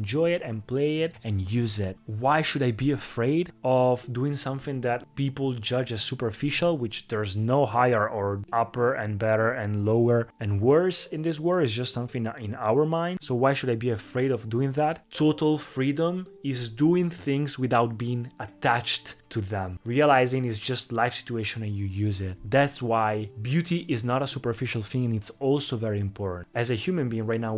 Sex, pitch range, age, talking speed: male, 115-140 Hz, 20-39, 190 wpm